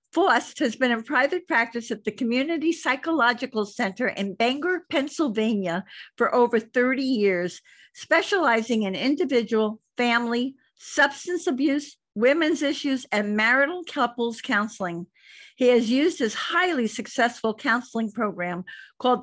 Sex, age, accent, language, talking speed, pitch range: female, 50-69, American, English, 120 wpm, 220-280 Hz